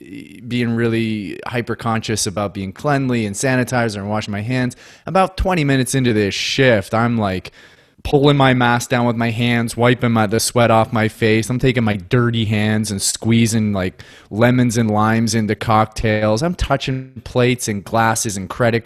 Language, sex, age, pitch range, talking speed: English, male, 20-39, 100-120 Hz, 185 wpm